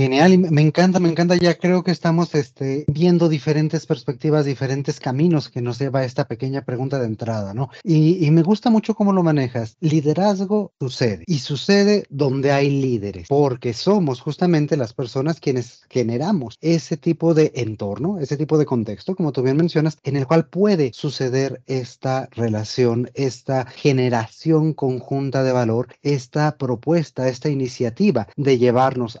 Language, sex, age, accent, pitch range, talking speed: Spanish, male, 30-49, Mexican, 125-165 Hz, 160 wpm